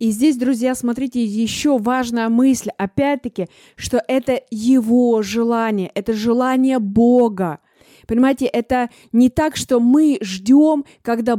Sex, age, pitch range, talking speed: female, 20-39, 230-265 Hz, 120 wpm